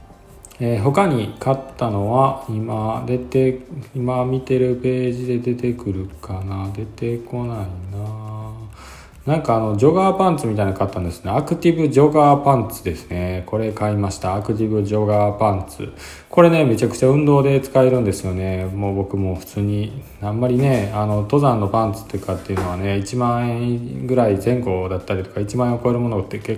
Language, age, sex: Japanese, 20-39, male